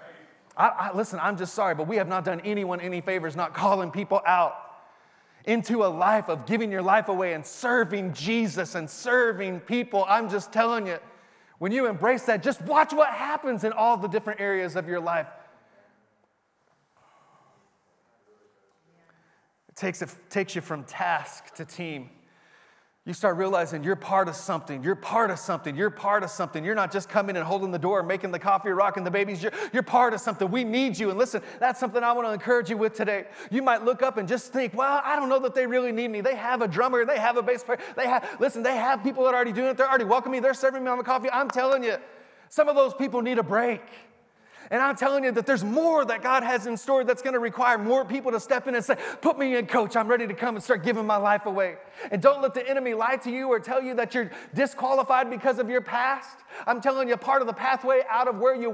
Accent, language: American, English